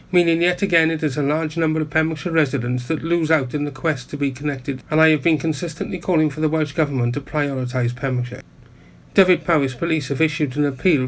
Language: English